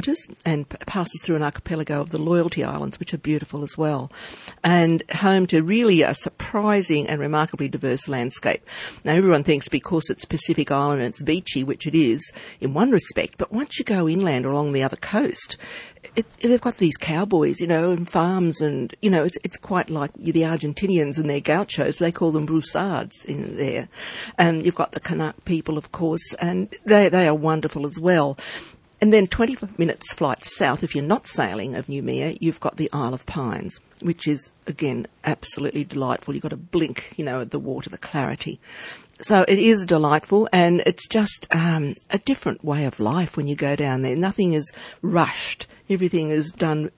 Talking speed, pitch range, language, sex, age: 195 wpm, 150-185 Hz, English, female, 50-69